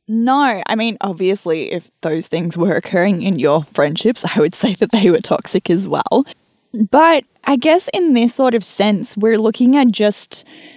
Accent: Australian